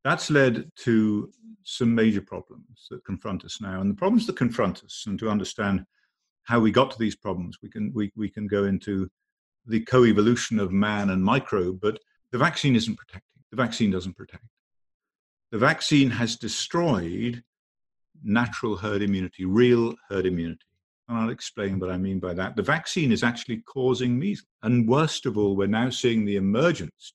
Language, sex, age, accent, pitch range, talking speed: English, male, 50-69, British, 95-125 Hz, 175 wpm